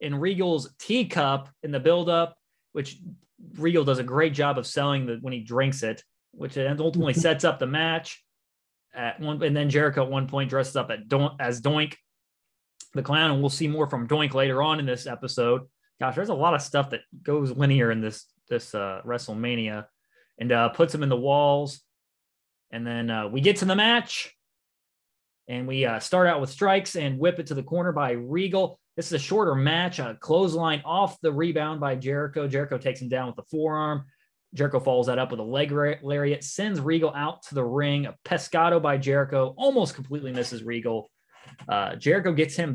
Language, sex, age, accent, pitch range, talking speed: English, male, 20-39, American, 130-165 Hz, 190 wpm